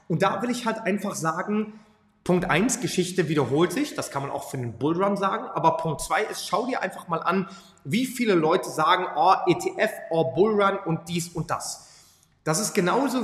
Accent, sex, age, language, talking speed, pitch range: German, male, 30-49, German, 205 wpm, 150-200 Hz